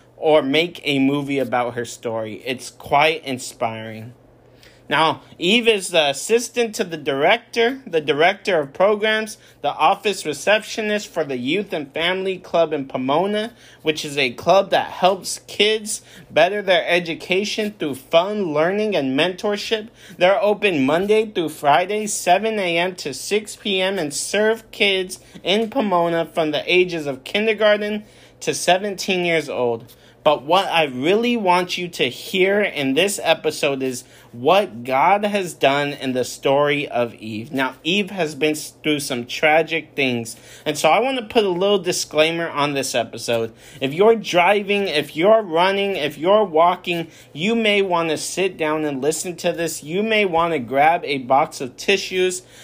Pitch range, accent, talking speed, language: 145-205 Hz, American, 160 wpm, English